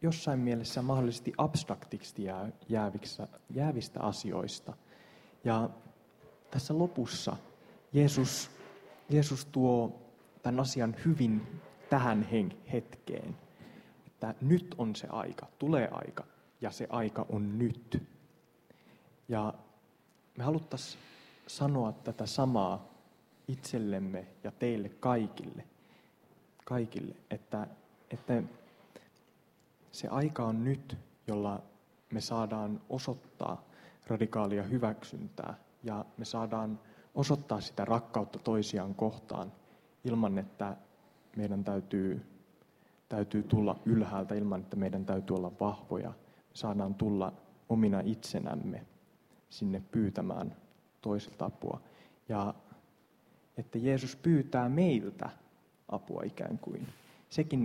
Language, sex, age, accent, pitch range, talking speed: Finnish, male, 20-39, native, 105-130 Hz, 95 wpm